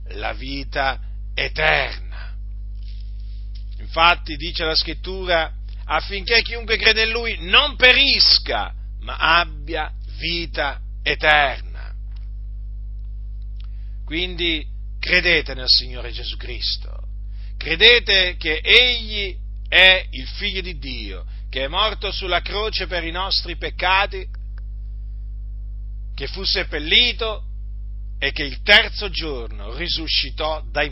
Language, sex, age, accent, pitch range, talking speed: Italian, male, 50-69, native, 100-170 Hz, 100 wpm